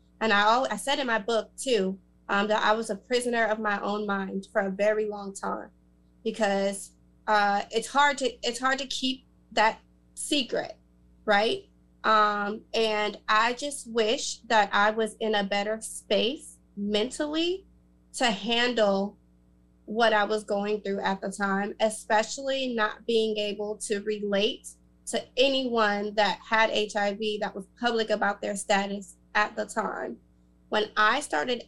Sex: female